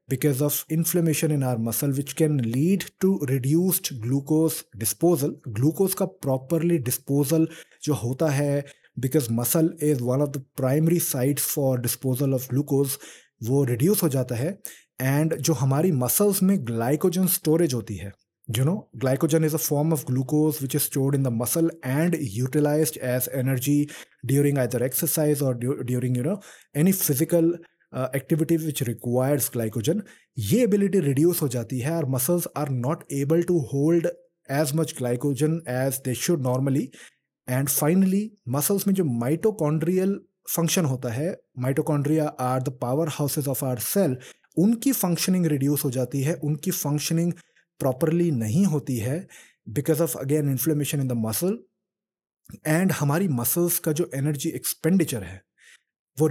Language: English